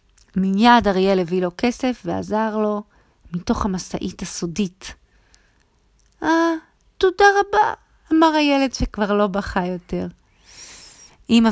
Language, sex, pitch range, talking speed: Hebrew, female, 190-270 Hz, 110 wpm